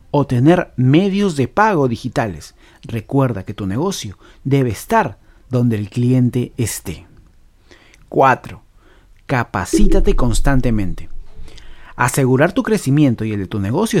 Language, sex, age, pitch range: Spanish, male, 40-59, 110-145 Hz